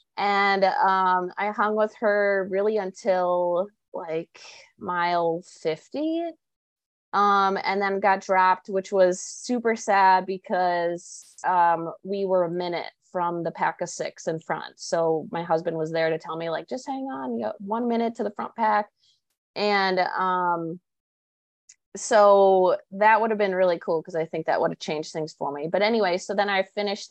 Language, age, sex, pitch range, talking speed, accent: English, 20-39, female, 165-195 Hz, 175 wpm, American